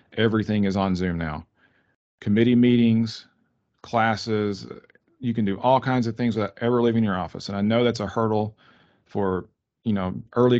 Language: English